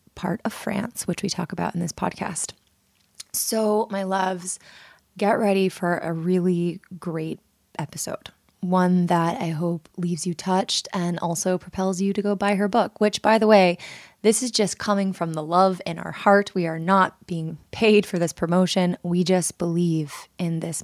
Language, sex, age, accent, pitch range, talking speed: English, female, 20-39, American, 170-195 Hz, 180 wpm